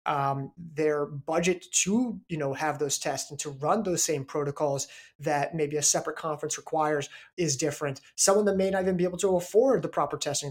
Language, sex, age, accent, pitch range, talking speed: English, male, 30-49, American, 145-185 Hz, 200 wpm